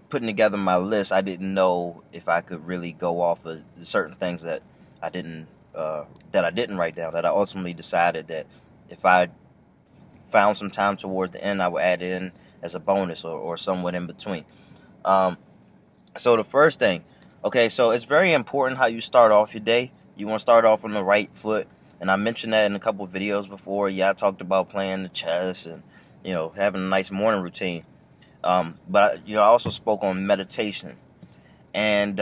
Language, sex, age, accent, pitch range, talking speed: English, male, 20-39, American, 90-115 Hz, 205 wpm